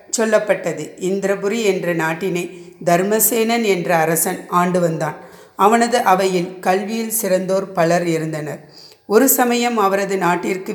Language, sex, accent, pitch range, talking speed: Tamil, female, native, 175-220 Hz, 105 wpm